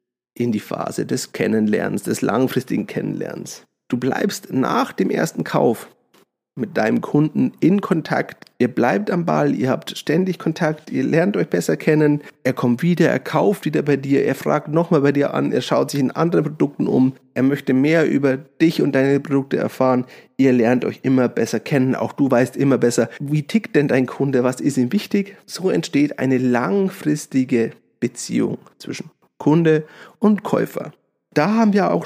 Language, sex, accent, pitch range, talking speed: German, male, German, 125-160 Hz, 180 wpm